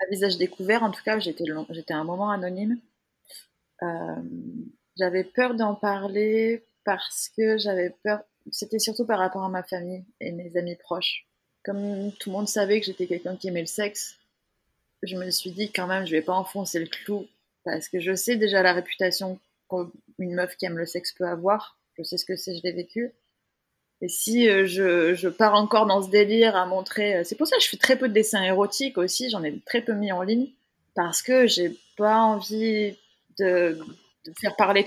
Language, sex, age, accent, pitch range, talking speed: French, female, 20-39, French, 180-225 Hz, 205 wpm